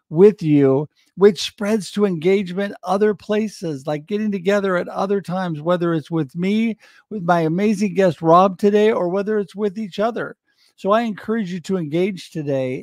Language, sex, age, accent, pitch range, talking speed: English, male, 50-69, American, 155-200 Hz, 175 wpm